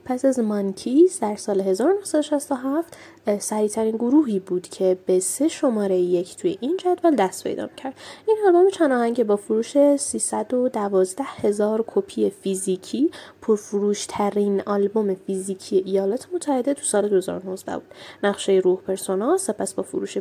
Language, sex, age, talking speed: Persian, female, 10-29, 135 wpm